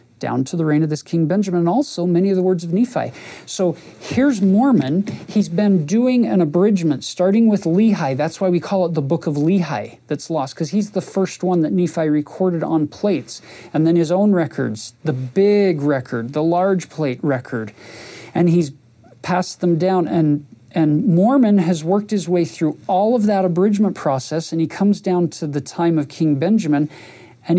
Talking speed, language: 195 wpm, English